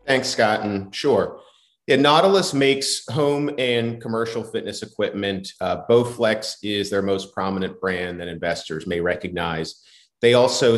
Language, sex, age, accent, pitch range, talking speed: English, male, 30-49, American, 95-115 Hz, 135 wpm